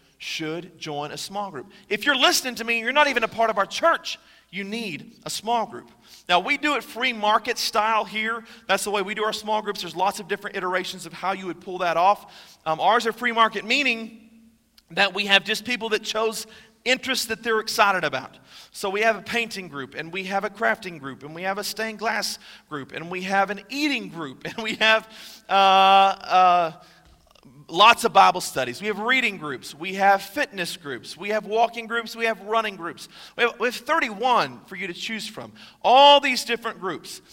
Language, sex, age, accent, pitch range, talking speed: English, male, 40-59, American, 195-235 Hz, 210 wpm